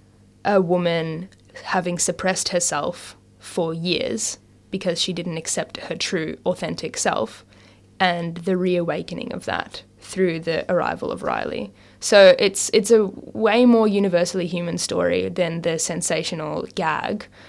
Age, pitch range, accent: 10-29, 165-215 Hz, Australian